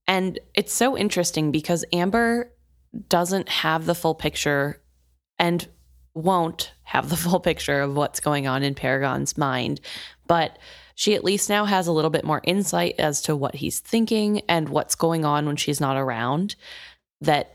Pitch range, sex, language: 150-185 Hz, female, English